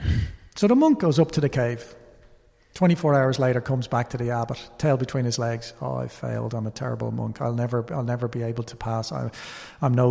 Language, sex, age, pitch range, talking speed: English, male, 40-59, 115-155 Hz, 225 wpm